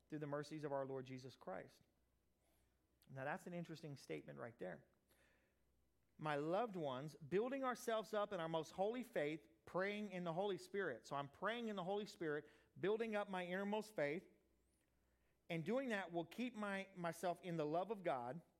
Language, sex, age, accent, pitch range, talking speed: English, male, 40-59, American, 155-215 Hz, 175 wpm